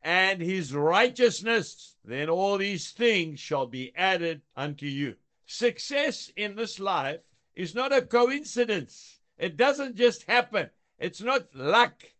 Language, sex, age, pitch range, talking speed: English, male, 60-79, 170-245 Hz, 135 wpm